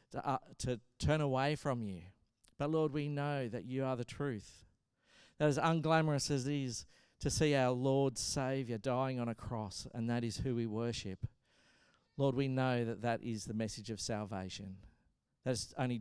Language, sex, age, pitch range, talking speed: English, male, 50-69, 110-145 Hz, 185 wpm